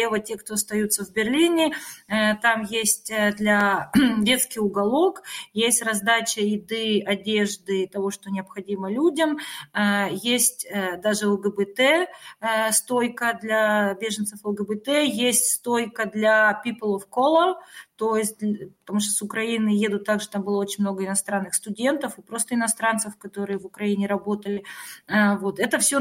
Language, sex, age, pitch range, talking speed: German, female, 30-49, 205-240 Hz, 145 wpm